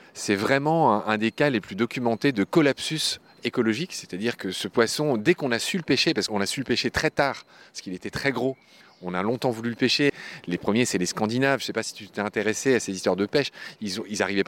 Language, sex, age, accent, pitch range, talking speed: French, male, 30-49, French, 105-145 Hz, 255 wpm